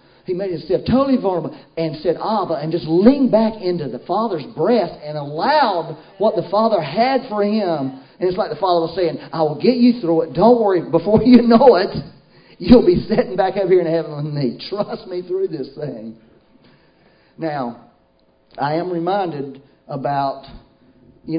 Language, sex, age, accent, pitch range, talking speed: English, male, 40-59, American, 150-240 Hz, 180 wpm